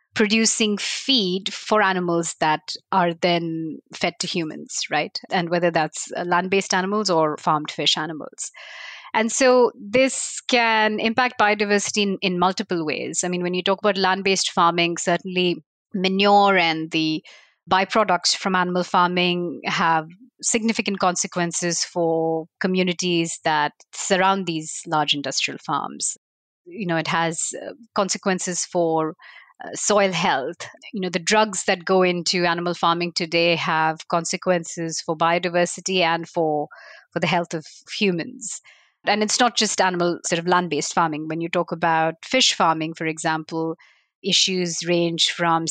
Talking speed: 140 wpm